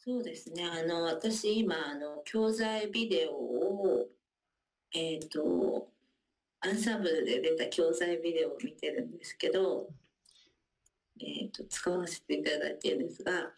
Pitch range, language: 165-270 Hz, Japanese